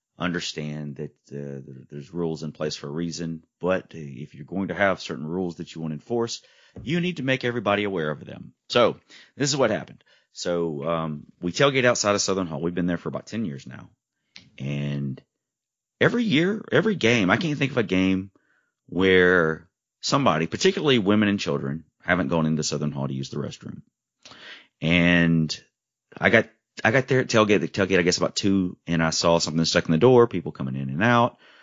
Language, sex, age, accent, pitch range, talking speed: English, male, 30-49, American, 80-110 Hz, 200 wpm